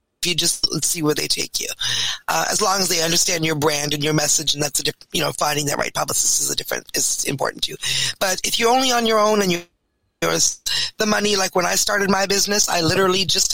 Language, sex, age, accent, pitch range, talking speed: English, female, 30-49, American, 165-200 Hz, 255 wpm